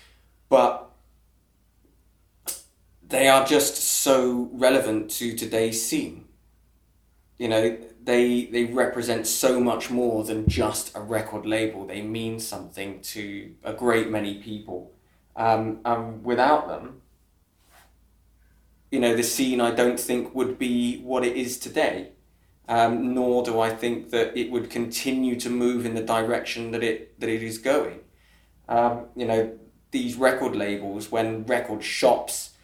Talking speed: 140 wpm